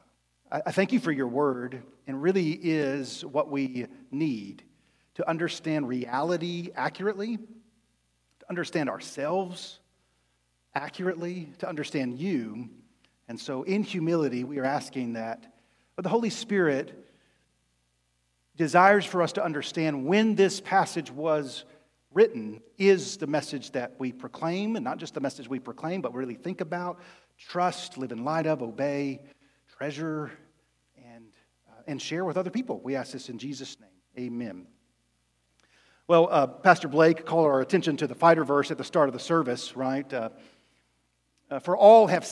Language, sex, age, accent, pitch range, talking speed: English, male, 40-59, American, 130-180 Hz, 150 wpm